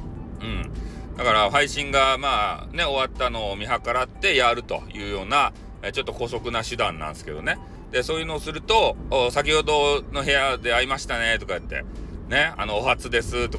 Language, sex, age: Japanese, male, 40-59